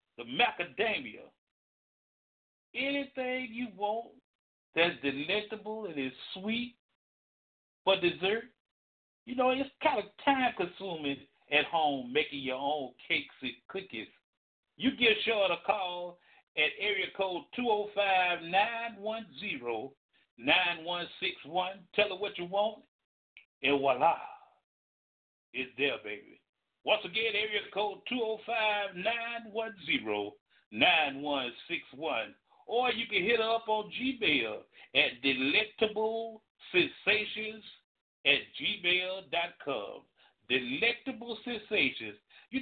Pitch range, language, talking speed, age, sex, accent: 160-230 Hz, English, 95 wpm, 60-79, male, American